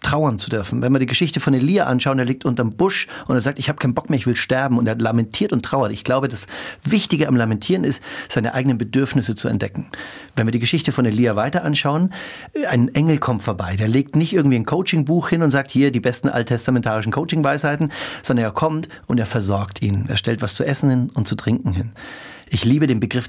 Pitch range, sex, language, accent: 115-140 Hz, male, German, German